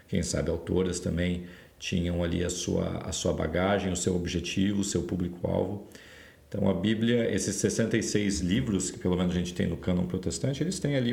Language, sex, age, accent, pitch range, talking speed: Portuguese, male, 40-59, Brazilian, 90-105 Hz, 190 wpm